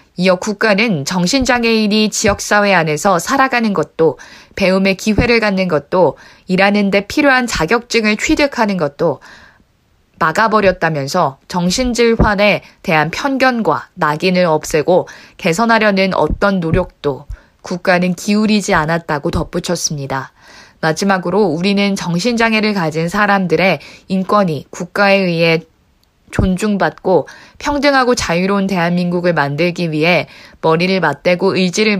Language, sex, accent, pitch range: Korean, female, native, 165-215 Hz